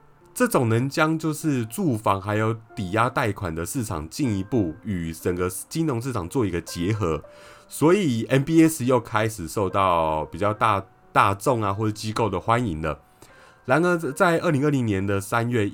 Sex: male